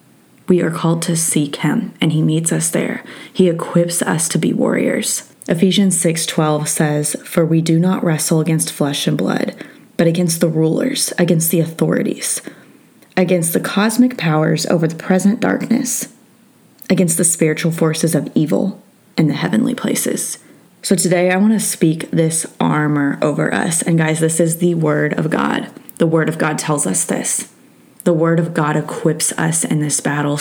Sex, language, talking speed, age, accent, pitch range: female, English, 175 wpm, 20-39, American, 160-185 Hz